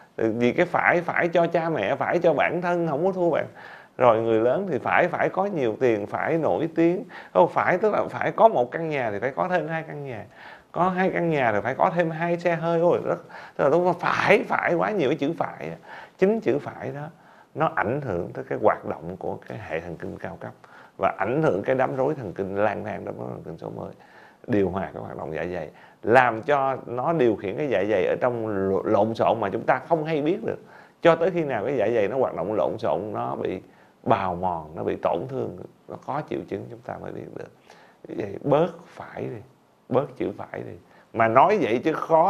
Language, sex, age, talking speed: Vietnamese, male, 30-49, 240 wpm